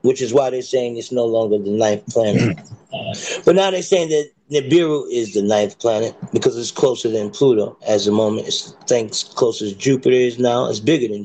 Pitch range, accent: 110-150 Hz, American